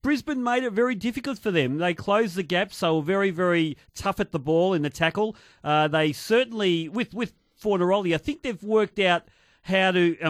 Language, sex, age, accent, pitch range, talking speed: English, male, 40-59, Australian, 150-195 Hz, 205 wpm